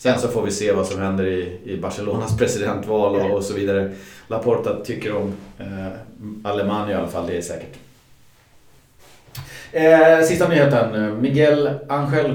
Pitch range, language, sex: 100-135 Hz, Swedish, male